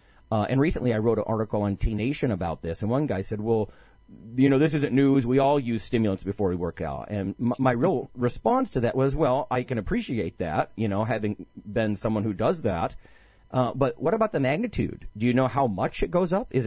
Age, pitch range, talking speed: 40-59, 100-135 Hz, 235 wpm